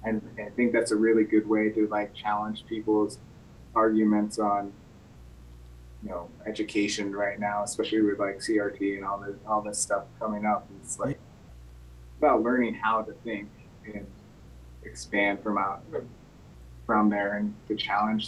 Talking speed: 155 wpm